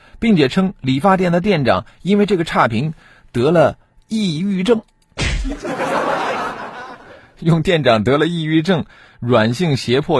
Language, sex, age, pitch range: Chinese, male, 50-69, 95-150 Hz